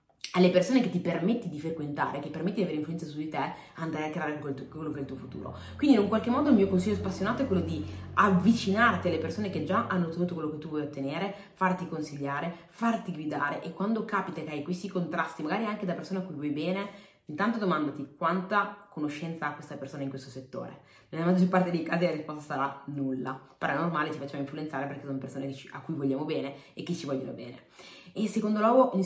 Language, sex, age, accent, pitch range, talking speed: Italian, female, 20-39, native, 140-190 Hz, 220 wpm